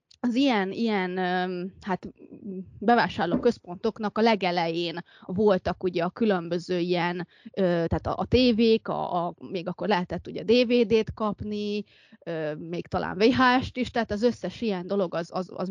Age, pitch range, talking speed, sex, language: 20-39, 185-225 Hz, 120 wpm, female, Hungarian